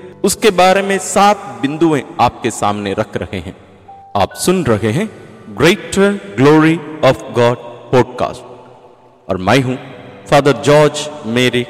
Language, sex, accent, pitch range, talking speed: English, male, Indian, 120-185 Hz, 130 wpm